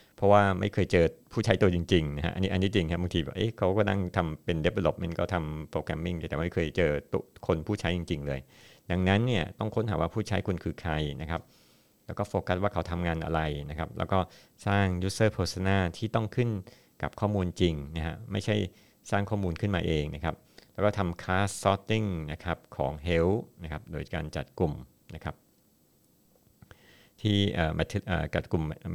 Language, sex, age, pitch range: Thai, male, 60-79, 80-100 Hz